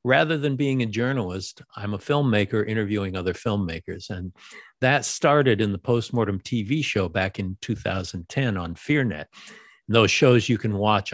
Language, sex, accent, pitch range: English, male, American, 105-135 Hz